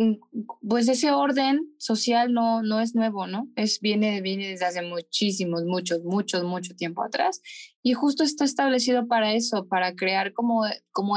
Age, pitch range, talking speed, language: 20-39, 195-235 Hz, 155 wpm, Spanish